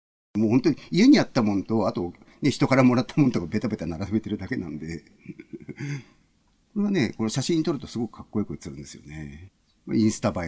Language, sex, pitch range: Japanese, male, 85-130 Hz